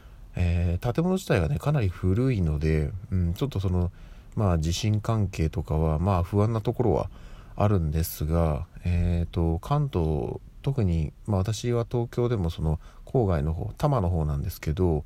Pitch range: 80-120 Hz